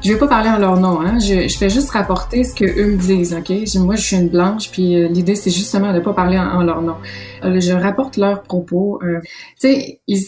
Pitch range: 180-210 Hz